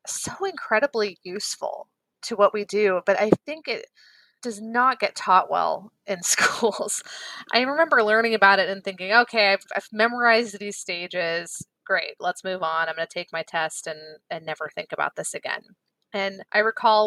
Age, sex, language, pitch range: 20-39, female, English, 185-225 Hz